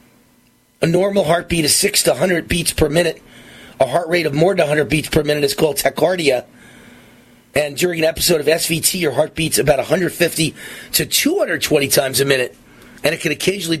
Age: 30-49